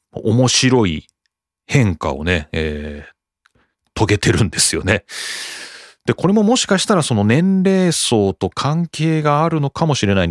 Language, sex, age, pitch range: Japanese, male, 40-59, 95-155 Hz